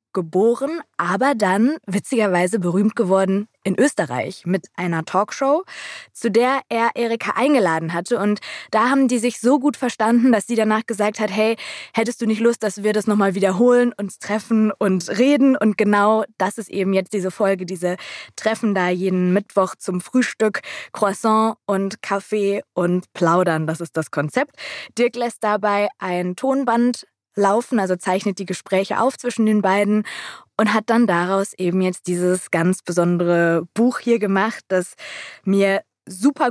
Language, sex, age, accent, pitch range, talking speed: German, female, 20-39, German, 190-230 Hz, 160 wpm